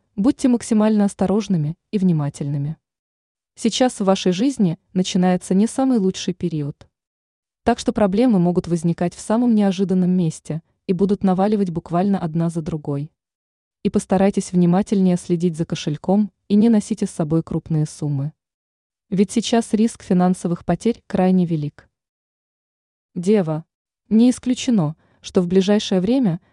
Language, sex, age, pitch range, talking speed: Russian, female, 20-39, 165-215 Hz, 130 wpm